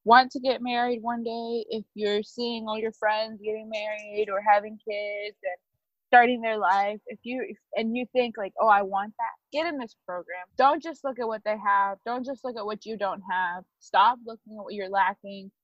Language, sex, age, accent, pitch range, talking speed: English, female, 20-39, American, 180-215 Hz, 215 wpm